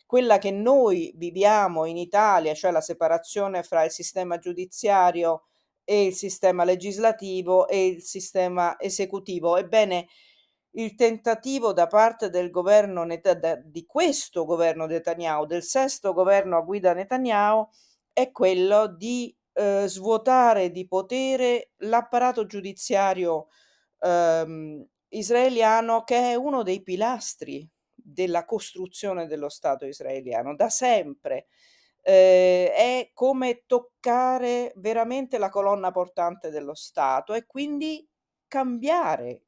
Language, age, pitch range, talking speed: Italian, 40-59, 175-240 Hz, 110 wpm